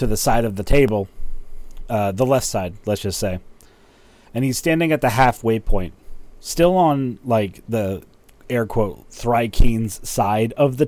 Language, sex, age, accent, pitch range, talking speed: English, male, 30-49, American, 105-135 Hz, 165 wpm